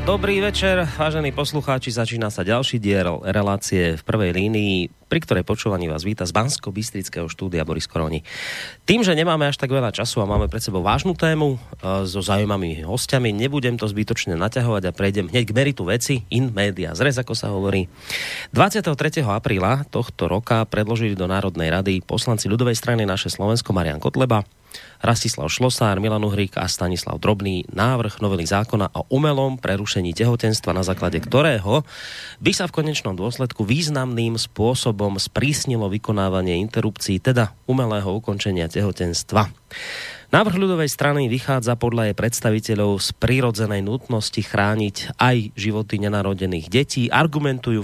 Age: 30-49